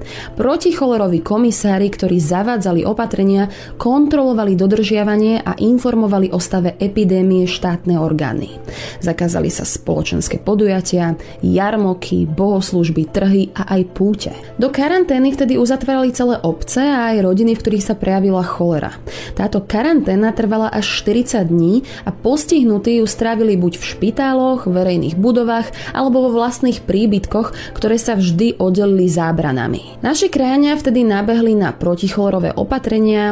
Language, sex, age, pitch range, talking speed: Slovak, female, 20-39, 180-230 Hz, 125 wpm